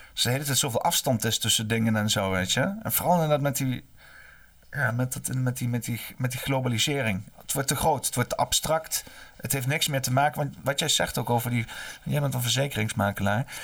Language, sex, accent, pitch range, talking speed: Dutch, male, Dutch, 115-160 Hz, 225 wpm